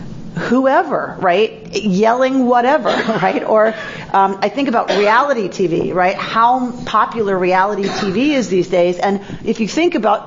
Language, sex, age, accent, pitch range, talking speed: English, female, 40-59, American, 195-265 Hz, 145 wpm